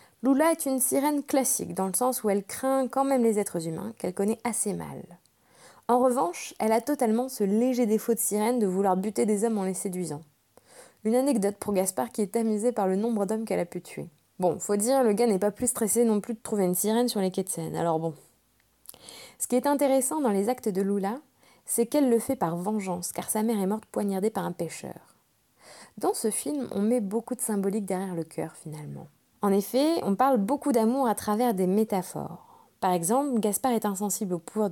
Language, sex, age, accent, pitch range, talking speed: French, female, 20-39, French, 190-240 Hz, 220 wpm